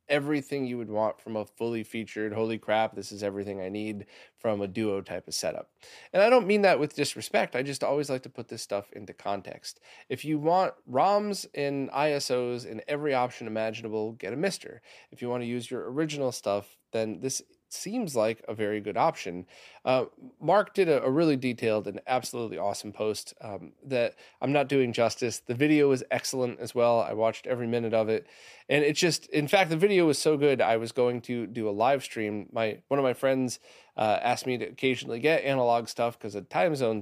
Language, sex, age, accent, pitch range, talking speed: English, male, 20-39, American, 110-140 Hz, 210 wpm